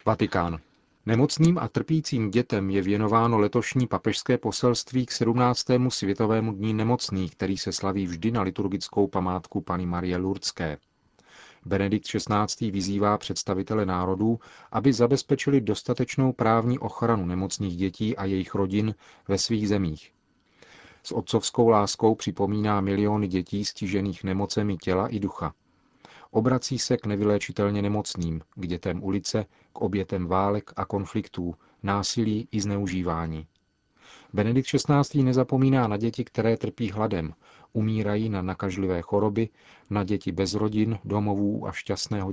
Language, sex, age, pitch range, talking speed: Czech, male, 40-59, 95-115 Hz, 125 wpm